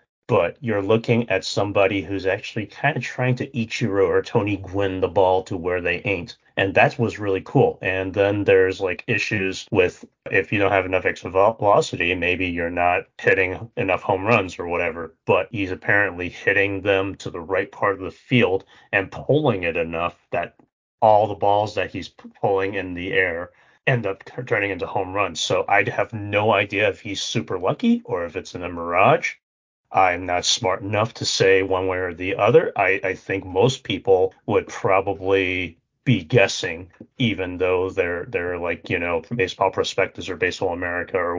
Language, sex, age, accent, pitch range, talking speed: English, male, 30-49, American, 90-110 Hz, 185 wpm